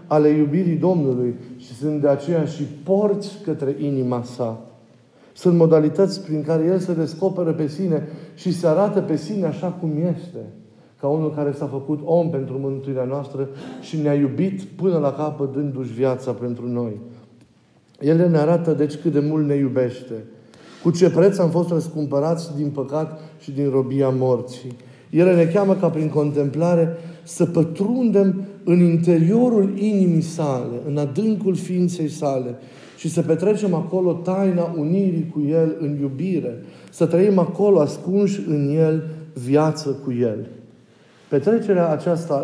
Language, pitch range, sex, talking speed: Romanian, 140-175 Hz, male, 150 wpm